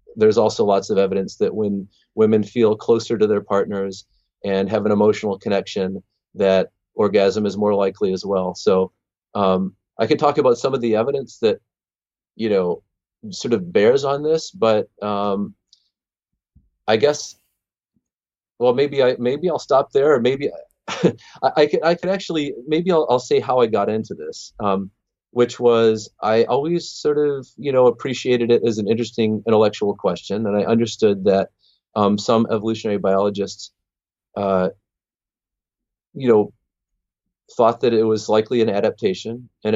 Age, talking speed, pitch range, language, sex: 30-49, 160 wpm, 100-125 Hz, English, male